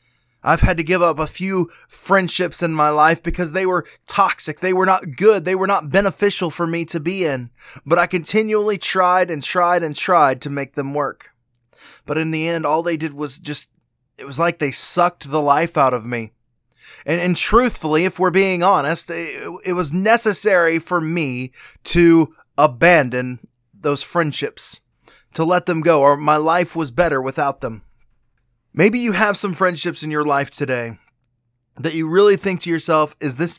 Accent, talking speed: American, 185 wpm